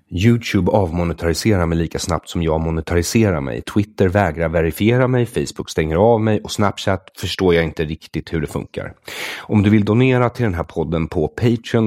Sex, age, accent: male, 30-49, Swedish